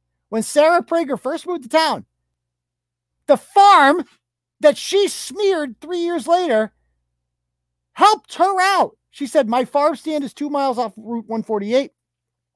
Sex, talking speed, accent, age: male, 140 wpm, American, 40-59